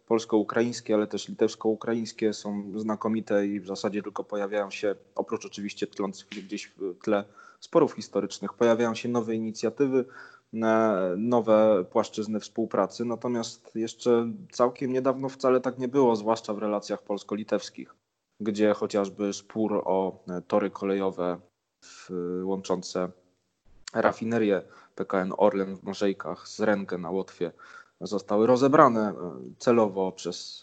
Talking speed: 120 wpm